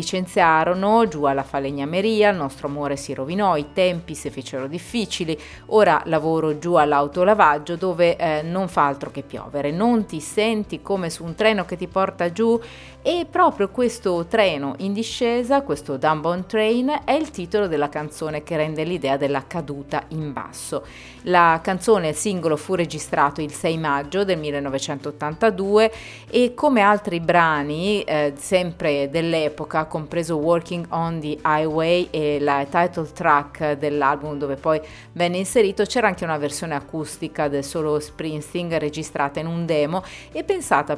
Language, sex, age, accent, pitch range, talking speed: Italian, female, 30-49, native, 150-190 Hz, 150 wpm